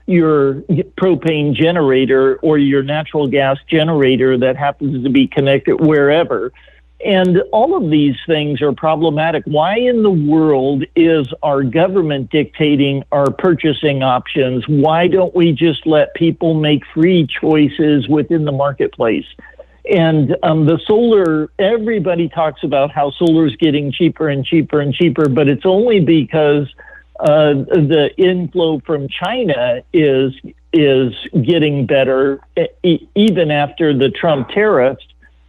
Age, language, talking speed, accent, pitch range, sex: 50-69, English, 135 wpm, American, 140-175 Hz, male